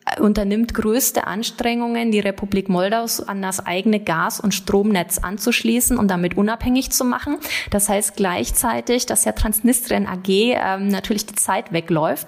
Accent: German